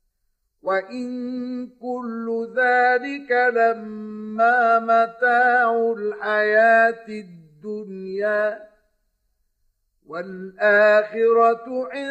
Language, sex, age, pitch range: Arabic, male, 50-69, 200-230 Hz